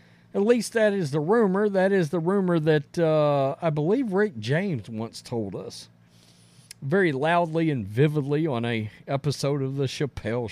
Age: 40-59